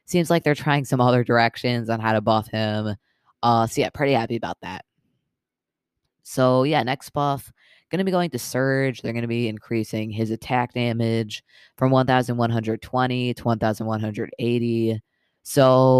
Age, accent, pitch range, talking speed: 20-39, American, 115-130 Hz, 140 wpm